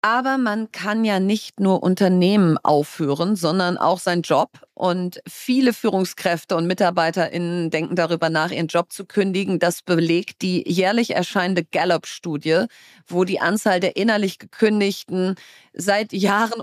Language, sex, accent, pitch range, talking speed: German, female, German, 180-220 Hz, 135 wpm